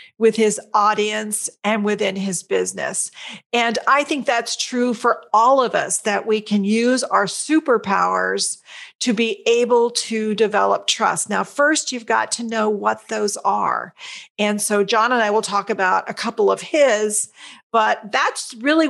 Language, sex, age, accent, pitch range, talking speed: English, female, 40-59, American, 195-265 Hz, 165 wpm